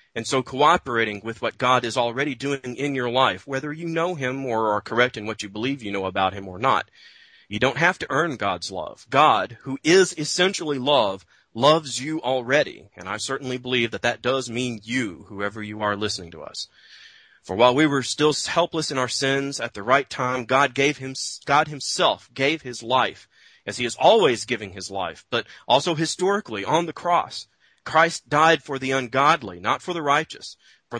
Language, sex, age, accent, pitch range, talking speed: English, male, 30-49, American, 115-150 Hz, 200 wpm